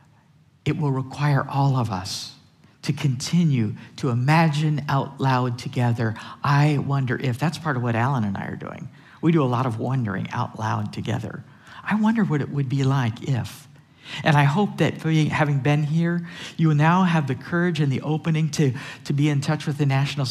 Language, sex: English, male